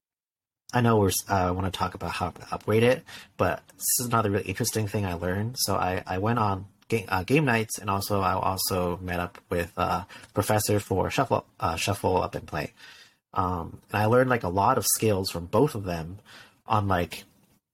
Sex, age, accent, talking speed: male, 30-49, American, 210 wpm